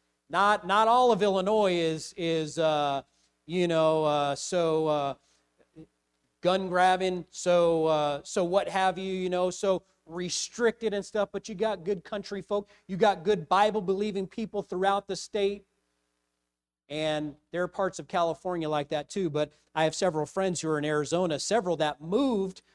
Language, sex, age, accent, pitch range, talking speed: English, male, 40-59, American, 145-190 Hz, 165 wpm